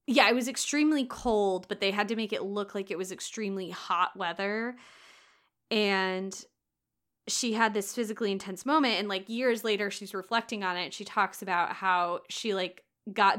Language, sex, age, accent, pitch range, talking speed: English, female, 20-39, American, 180-215 Hz, 185 wpm